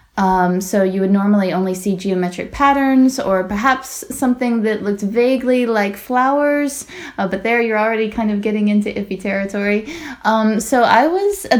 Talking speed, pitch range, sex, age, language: 170 wpm, 195-240 Hz, female, 20-39, English